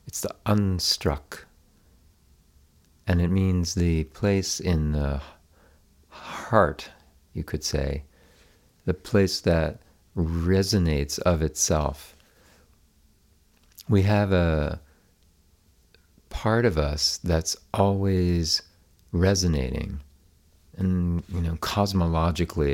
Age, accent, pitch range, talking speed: 50-69, American, 75-90 Hz, 85 wpm